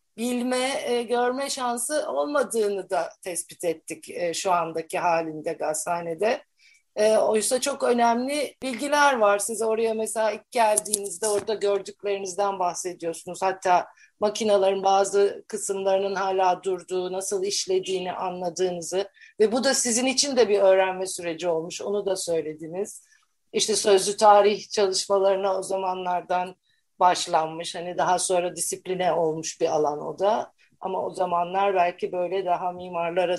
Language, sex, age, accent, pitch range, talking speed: Turkish, female, 50-69, native, 180-220 Hz, 130 wpm